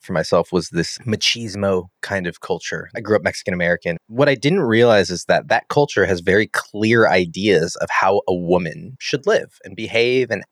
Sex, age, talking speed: male, 30-49, 190 wpm